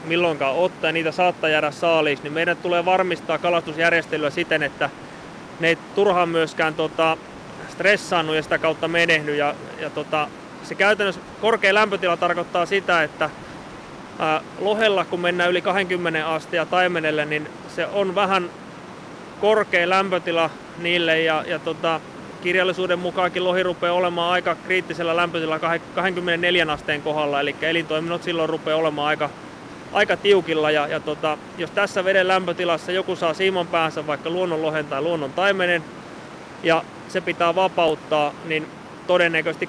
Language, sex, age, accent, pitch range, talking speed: Finnish, male, 30-49, native, 155-180 Hz, 135 wpm